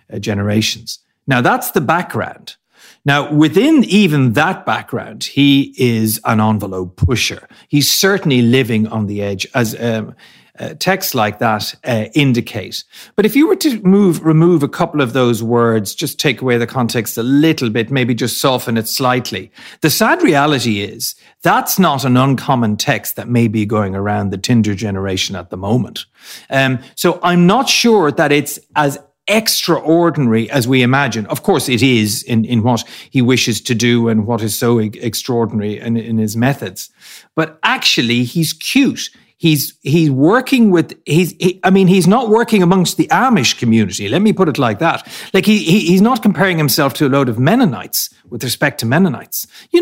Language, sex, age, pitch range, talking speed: English, male, 40-59, 115-170 Hz, 180 wpm